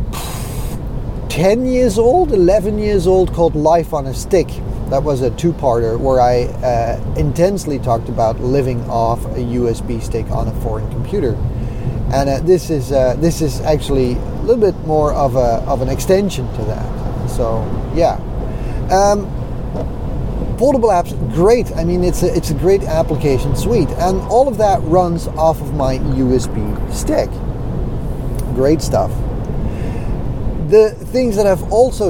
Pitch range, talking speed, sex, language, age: 120-165 Hz, 150 wpm, male, English, 30-49